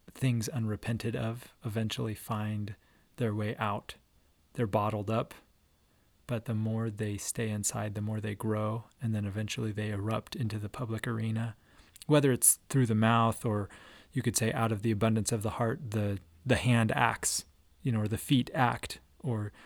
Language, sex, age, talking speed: English, male, 30-49, 175 wpm